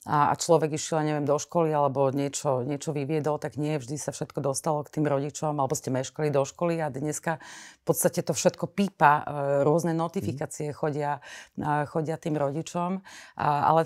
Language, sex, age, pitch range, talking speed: Slovak, female, 30-49, 145-170 Hz, 165 wpm